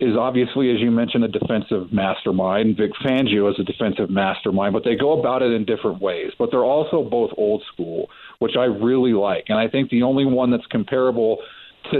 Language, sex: English, male